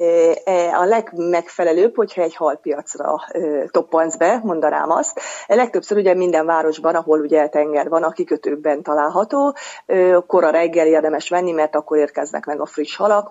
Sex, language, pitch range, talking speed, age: female, Hungarian, 155-185 Hz, 145 wpm, 30-49